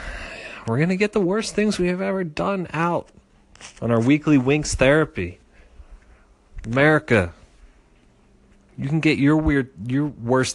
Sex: male